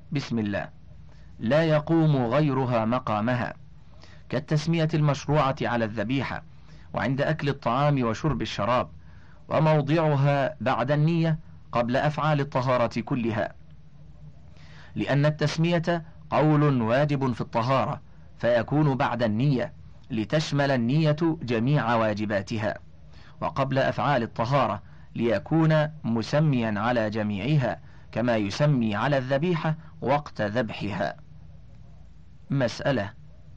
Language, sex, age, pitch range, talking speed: Arabic, male, 40-59, 120-150 Hz, 90 wpm